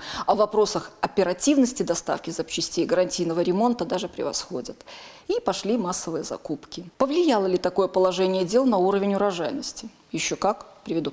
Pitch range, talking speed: 180-230 Hz, 130 wpm